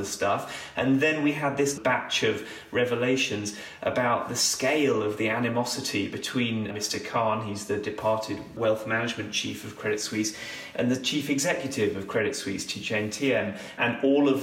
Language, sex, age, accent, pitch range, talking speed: English, male, 30-49, British, 105-120 Hz, 160 wpm